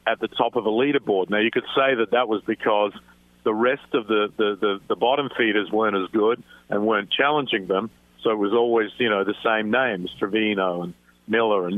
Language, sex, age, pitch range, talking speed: English, male, 50-69, 100-145 Hz, 220 wpm